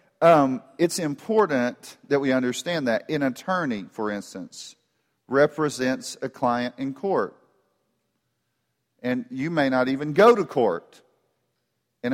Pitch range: 120-150 Hz